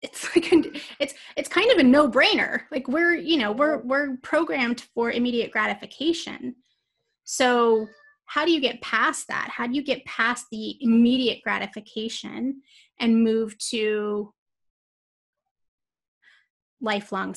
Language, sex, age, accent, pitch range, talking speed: English, female, 30-49, American, 220-300 Hz, 130 wpm